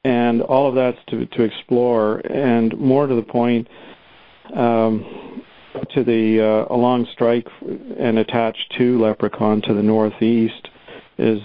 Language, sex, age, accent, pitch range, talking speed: English, male, 50-69, American, 110-120 Hz, 135 wpm